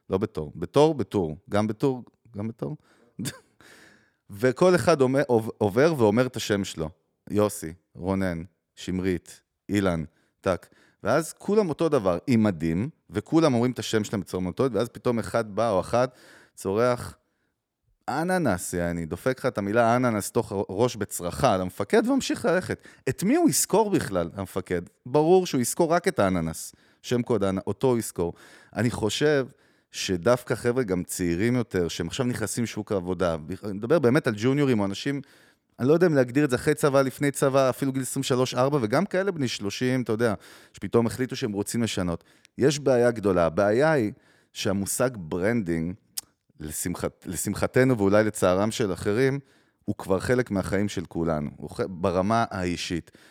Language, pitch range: Hebrew, 95-130 Hz